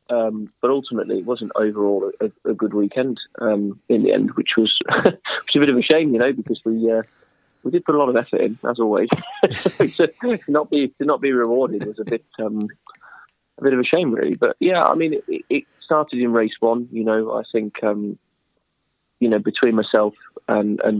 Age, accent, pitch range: 20-39, British, 105-130 Hz